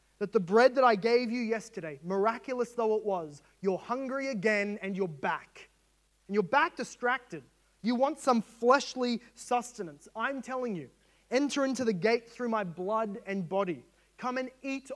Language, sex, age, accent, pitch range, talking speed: English, male, 20-39, Australian, 190-235 Hz, 170 wpm